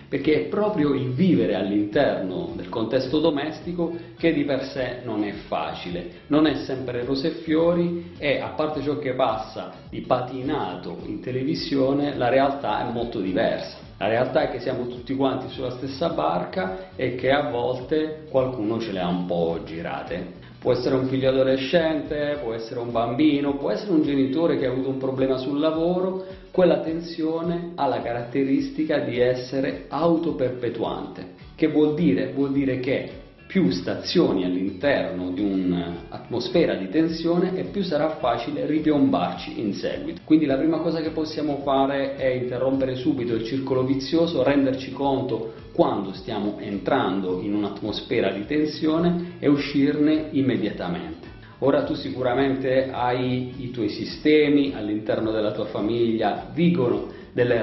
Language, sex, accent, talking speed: Italian, male, native, 150 wpm